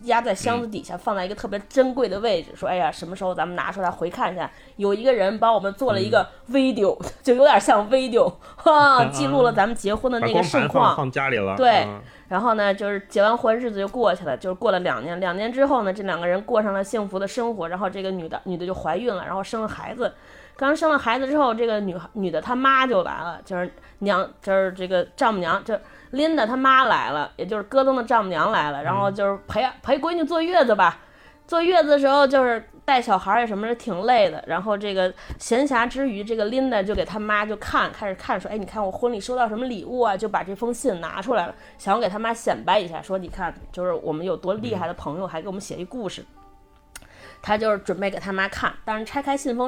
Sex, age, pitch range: female, 20-39, 190-255 Hz